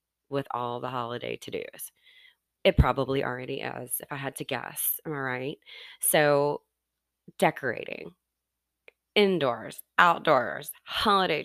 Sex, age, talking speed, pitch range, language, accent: female, 20-39, 115 wpm, 130-210 Hz, English, American